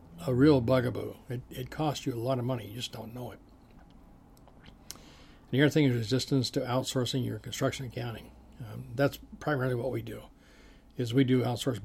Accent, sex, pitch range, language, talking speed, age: American, male, 115-140 Hz, English, 185 wpm, 60-79